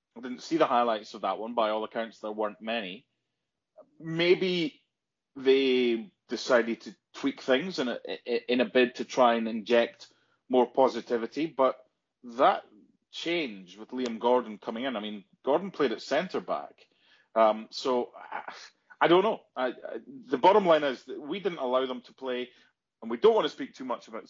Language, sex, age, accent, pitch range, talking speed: English, male, 30-49, British, 120-170 Hz, 170 wpm